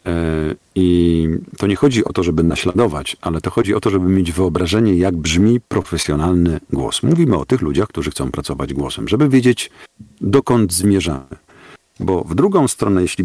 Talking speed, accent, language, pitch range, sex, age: 170 wpm, native, Polish, 80-100 Hz, male, 50-69